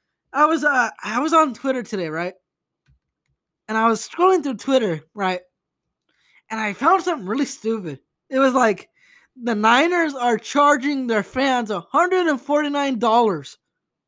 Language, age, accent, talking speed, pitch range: English, 20-39, American, 140 wpm, 215-300 Hz